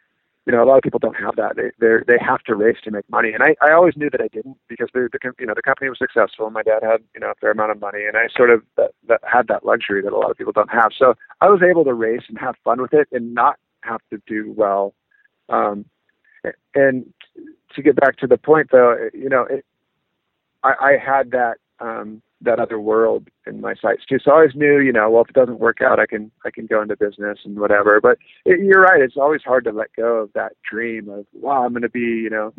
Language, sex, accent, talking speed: English, male, American, 265 wpm